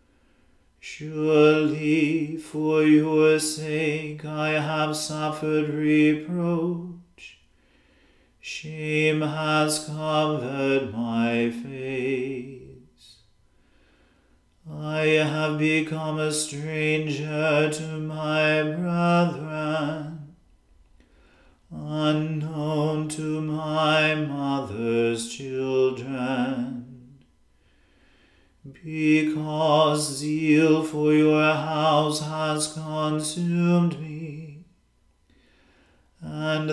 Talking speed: 55 wpm